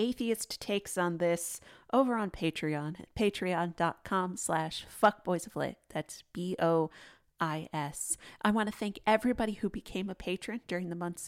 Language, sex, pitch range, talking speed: English, female, 180-230 Hz, 130 wpm